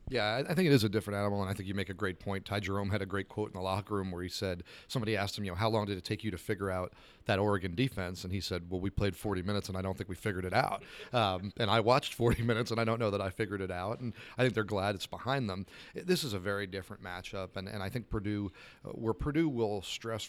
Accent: American